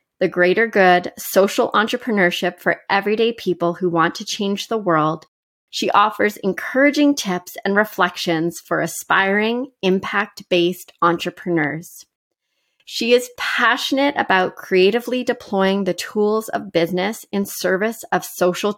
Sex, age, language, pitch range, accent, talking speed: female, 30-49, English, 170-220 Hz, American, 120 wpm